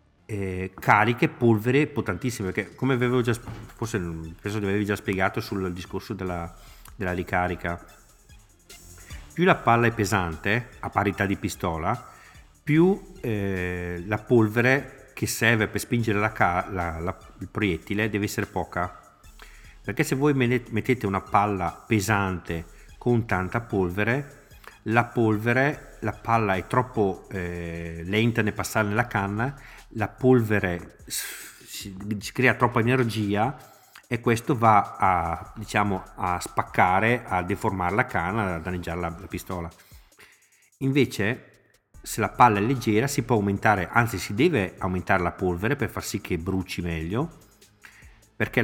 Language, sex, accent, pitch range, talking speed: Italian, male, native, 95-120 Hz, 135 wpm